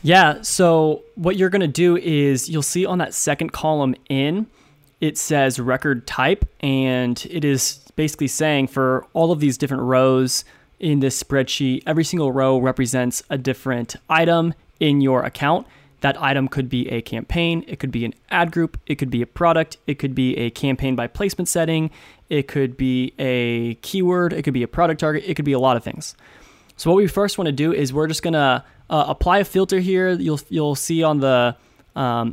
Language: English